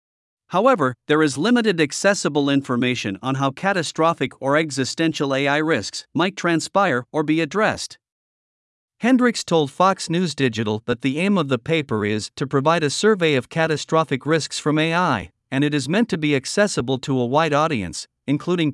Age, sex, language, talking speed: 50-69, male, Vietnamese, 165 wpm